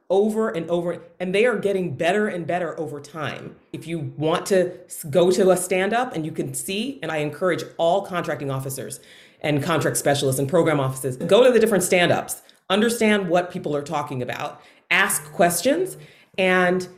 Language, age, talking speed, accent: English, 30-49, 175 wpm, American